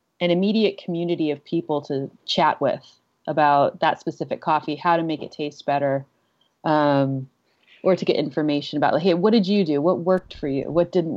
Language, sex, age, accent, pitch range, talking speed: English, female, 30-49, American, 150-180 Hz, 195 wpm